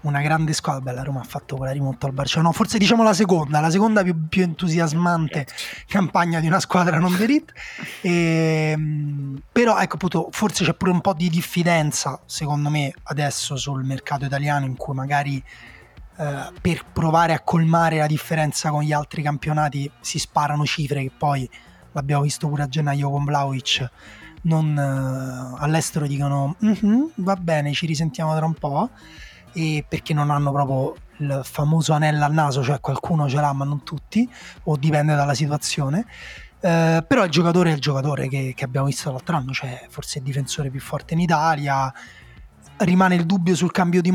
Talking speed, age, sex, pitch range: 175 wpm, 20-39, male, 145-175 Hz